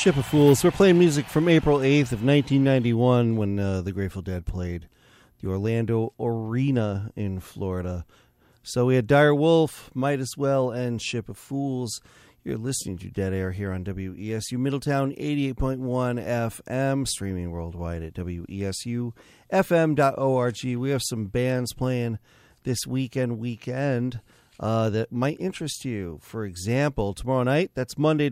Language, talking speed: English, 145 wpm